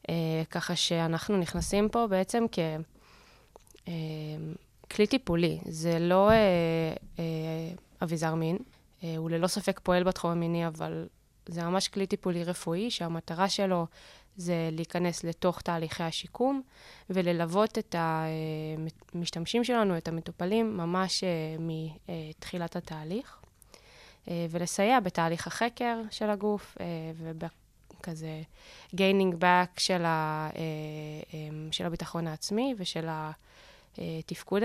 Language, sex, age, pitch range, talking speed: Hebrew, female, 20-39, 160-190 Hz, 95 wpm